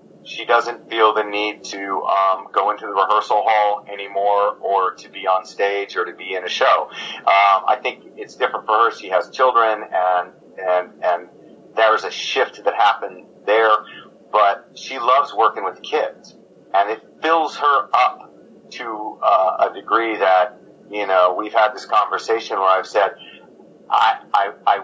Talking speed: 175 wpm